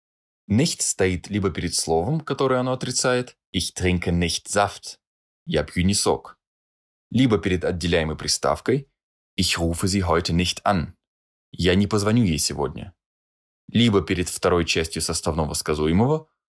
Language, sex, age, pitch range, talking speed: Russian, male, 20-39, 80-105 Hz, 135 wpm